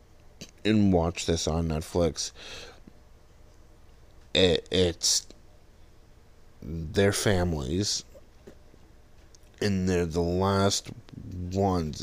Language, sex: English, male